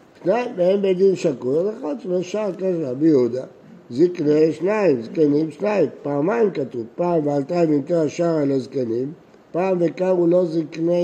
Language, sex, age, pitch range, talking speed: Hebrew, male, 60-79, 140-185 Hz, 145 wpm